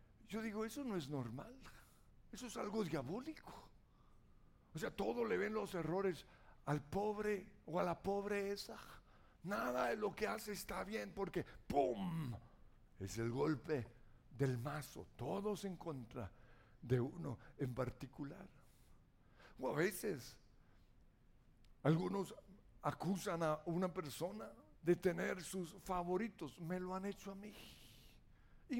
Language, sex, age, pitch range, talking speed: Spanish, male, 60-79, 125-190 Hz, 130 wpm